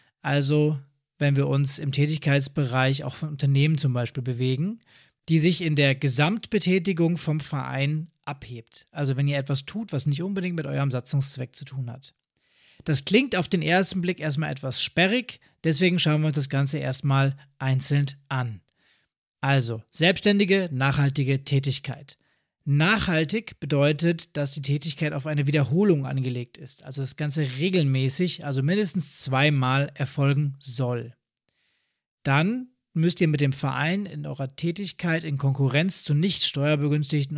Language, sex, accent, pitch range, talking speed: German, male, German, 135-165 Hz, 145 wpm